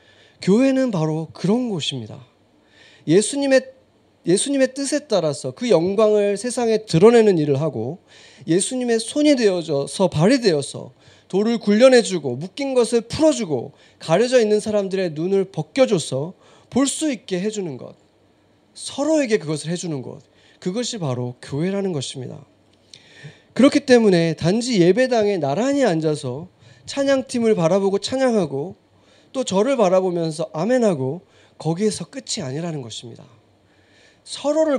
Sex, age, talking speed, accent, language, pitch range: male, 30-49, 100 wpm, Korean, English, 145-235 Hz